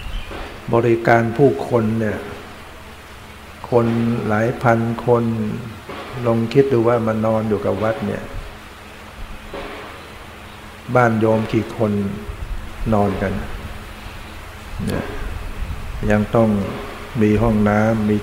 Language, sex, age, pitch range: Thai, male, 60-79, 100-115 Hz